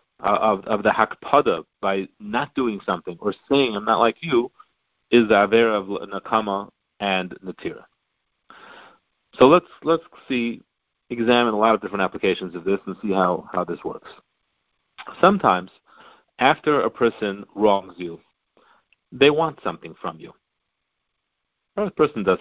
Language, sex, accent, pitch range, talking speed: English, male, American, 100-165 Hz, 145 wpm